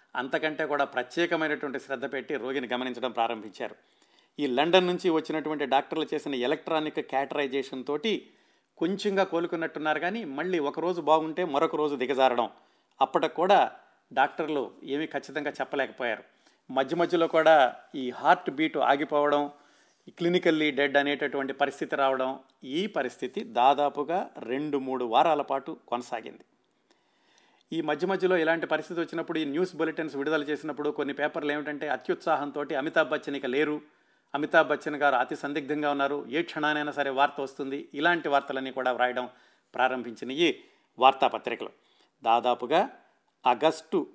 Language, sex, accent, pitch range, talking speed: Telugu, male, native, 130-155 Hz, 115 wpm